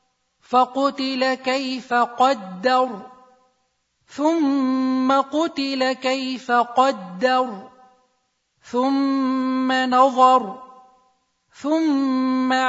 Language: Arabic